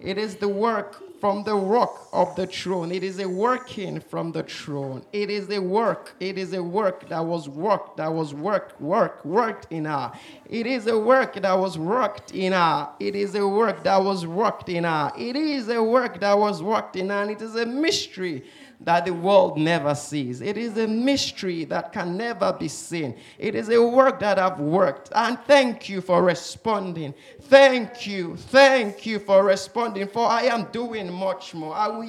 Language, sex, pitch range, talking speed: English, male, 180-235 Hz, 200 wpm